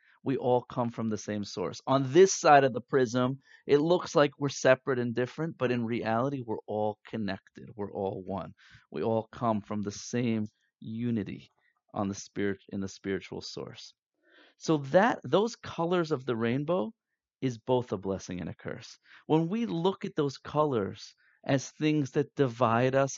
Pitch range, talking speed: 115-155 Hz, 175 wpm